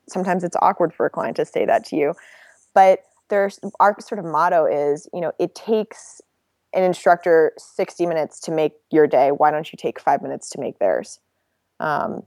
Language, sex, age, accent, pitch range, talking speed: English, female, 20-39, American, 155-190 Hz, 195 wpm